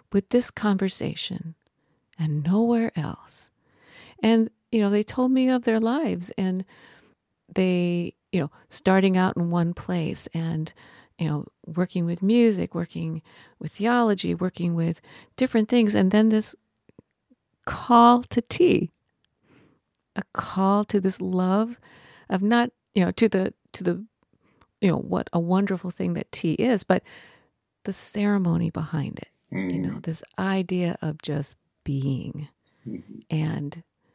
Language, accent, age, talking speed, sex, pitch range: English, American, 50-69, 135 wpm, female, 170-220 Hz